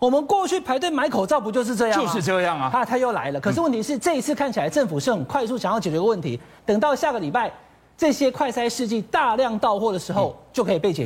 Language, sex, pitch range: Chinese, male, 195-280 Hz